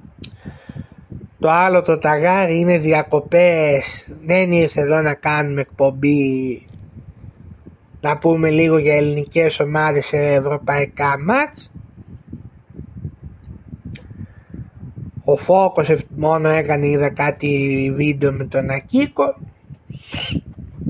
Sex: male